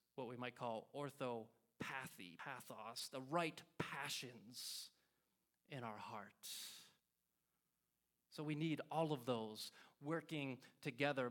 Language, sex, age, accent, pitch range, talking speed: English, male, 30-49, American, 125-165 Hz, 105 wpm